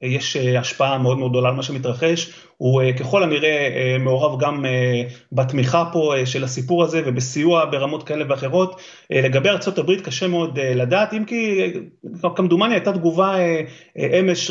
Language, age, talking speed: Hebrew, 30-49, 135 wpm